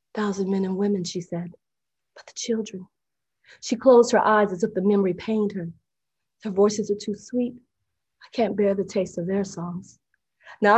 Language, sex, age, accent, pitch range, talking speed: English, female, 40-59, American, 195-225 Hz, 185 wpm